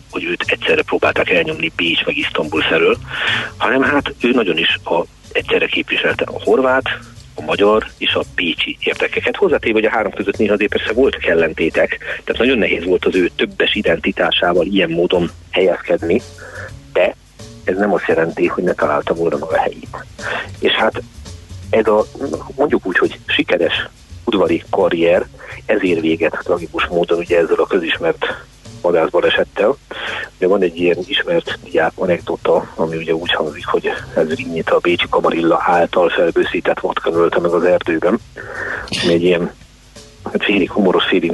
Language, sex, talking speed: Hungarian, male, 150 wpm